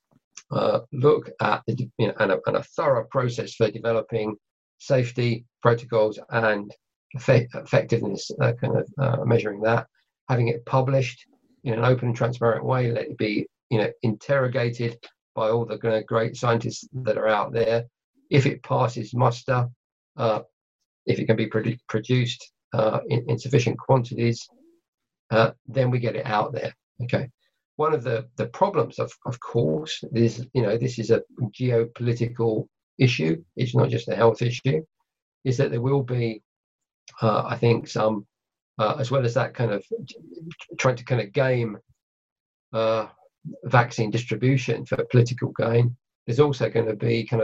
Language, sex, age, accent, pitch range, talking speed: English, male, 50-69, British, 115-130 Hz, 155 wpm